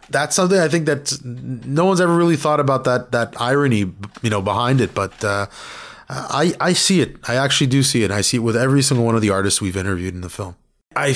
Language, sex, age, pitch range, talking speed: English, male, 30-49, 105-135 Hz, 240 wpm